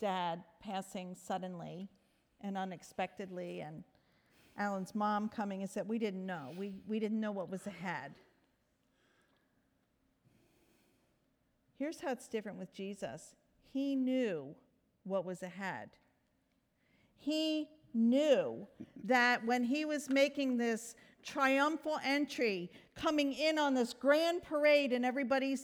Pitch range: 200-280 Hz